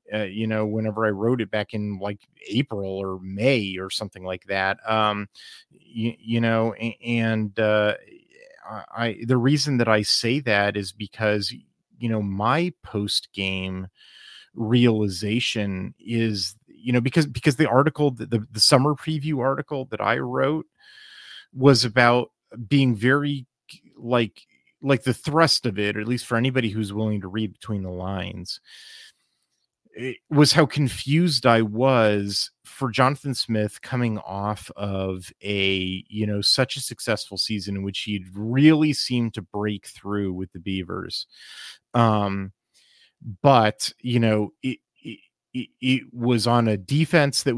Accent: American